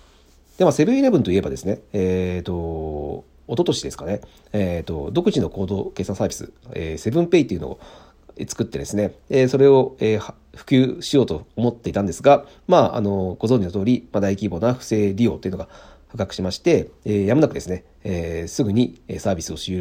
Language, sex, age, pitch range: Japanese, male, 40-59, 85-125 Hz